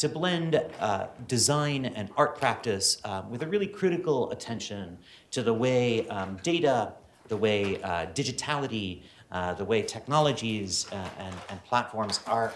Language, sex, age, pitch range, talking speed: English, male, 40-59, 95-125 Hz, 150 wpm